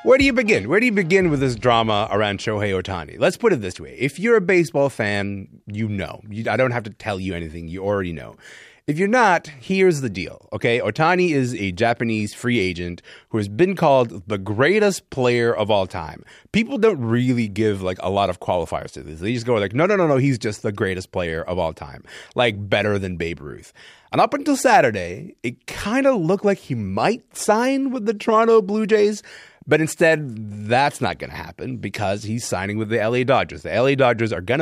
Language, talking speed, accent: English, 220 wpm, American